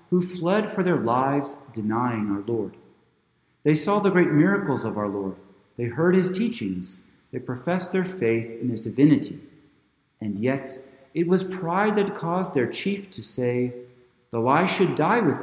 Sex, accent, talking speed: male, American, 165 wpm